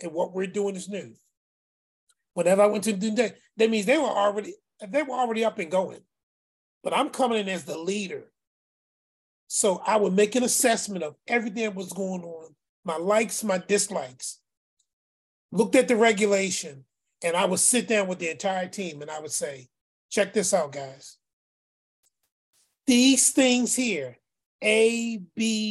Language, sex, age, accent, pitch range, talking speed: English, male, 30-49, American, 180-235 Hz, 170 wpm